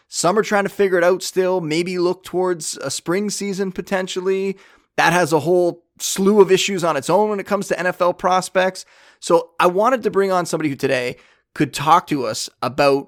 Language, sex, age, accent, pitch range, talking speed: English, male, 20-39, American, 150-190 Hz, 205 wpm